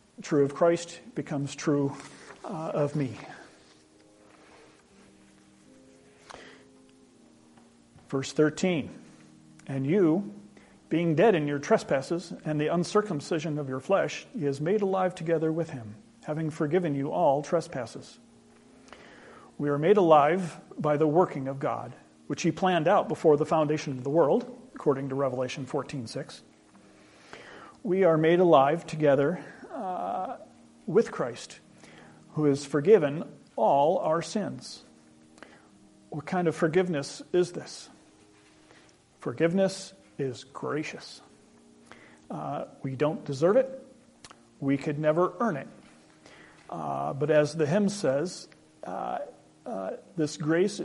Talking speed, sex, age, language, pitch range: 120 wpm, male, 40-59, English, 135-175 Hz